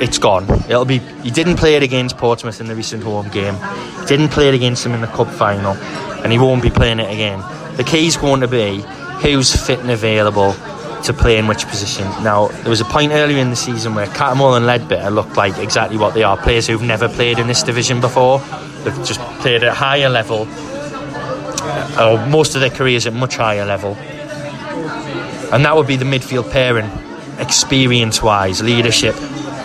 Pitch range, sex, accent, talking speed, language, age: 110-140 Hz, male, British, 200 wpm, English, 20-39